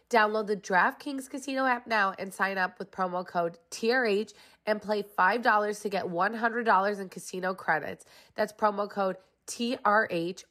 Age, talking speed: 20-39, 150 wpm